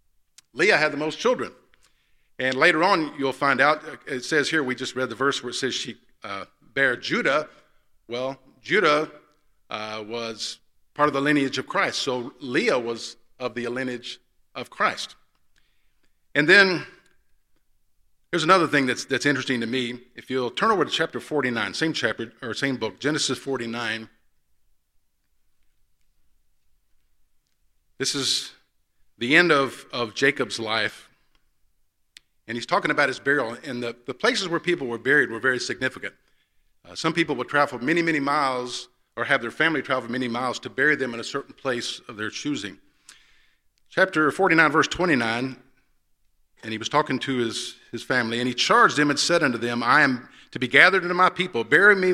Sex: male